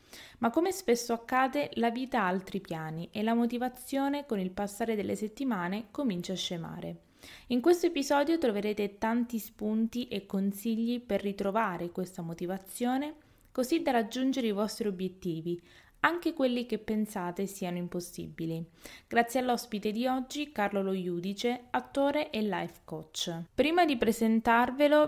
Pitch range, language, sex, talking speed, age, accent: 190-240 Hz, Italian, female, 135 wpm, 20-39, native